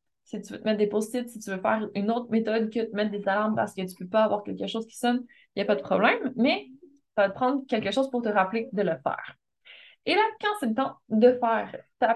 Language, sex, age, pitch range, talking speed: French, female, 20-39, 210-260 Hz, 285 wpm